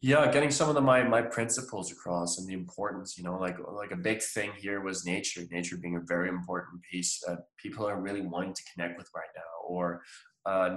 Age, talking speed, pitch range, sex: 20-39, 225 wpm, 90-115 Hz, male